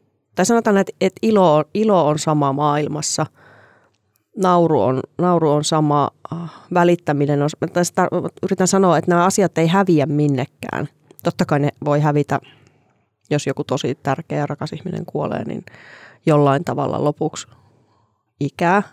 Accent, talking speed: native, 145 wpm